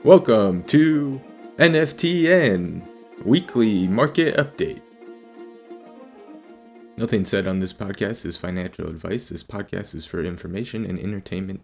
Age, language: 20-39, English